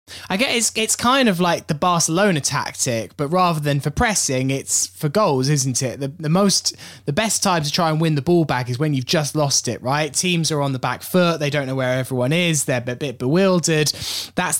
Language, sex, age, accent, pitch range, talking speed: English, male, 20-39, British, 120-160 Hz, 230 wpm